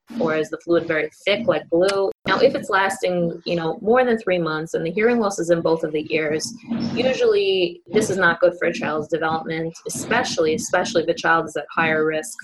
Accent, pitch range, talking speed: American, 160-205 Hz, 220 wpm